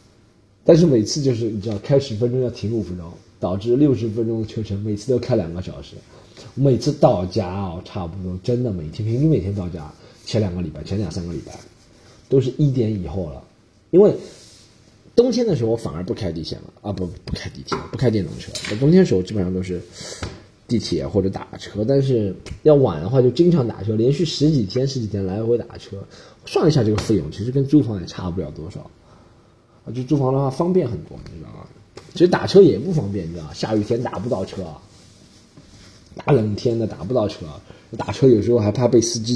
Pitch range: 105-140 Hz